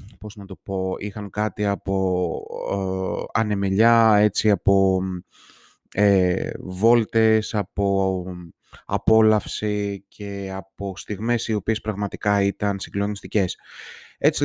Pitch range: 100-110 Hz